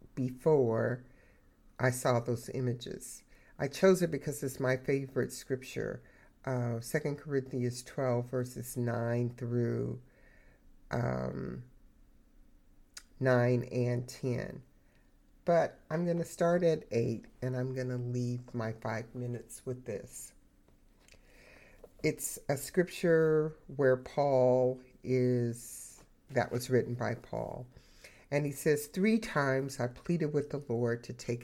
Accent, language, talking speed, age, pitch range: American, English, 120 wpm, 60-79, 120-145 Hz